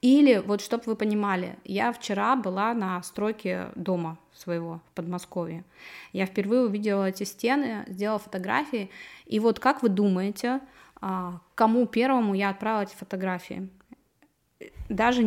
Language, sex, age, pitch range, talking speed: Russian, female, 20-39, 195-235 Hz, 130 wpm